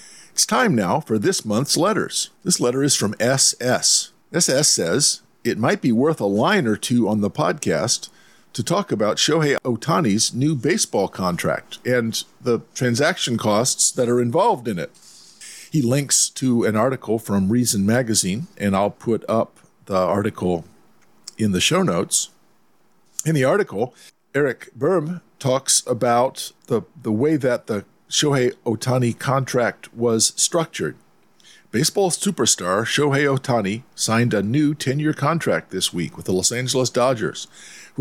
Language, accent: English, American